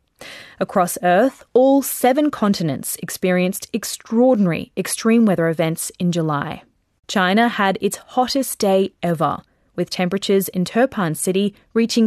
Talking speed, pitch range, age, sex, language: 120 wpm, 175-225 Hz, 20-39, female, English